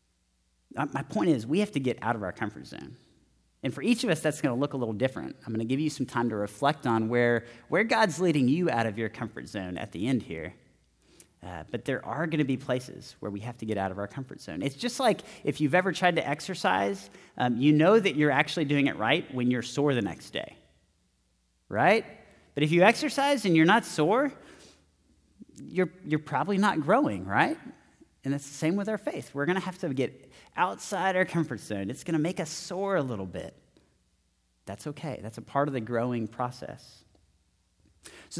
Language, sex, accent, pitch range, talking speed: English, male, American, 115-160 Hz, 220 wpm